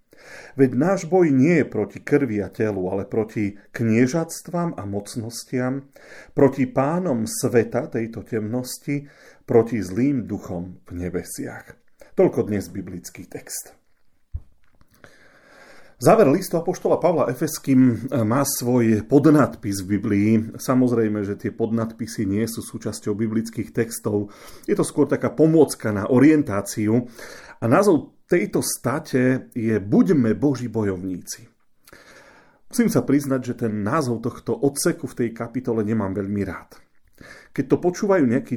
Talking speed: 125 wpm